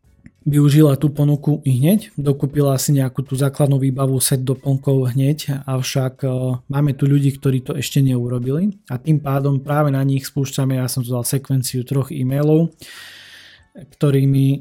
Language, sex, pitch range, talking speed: Slovak, male, 130-145 Hz, 155 wpm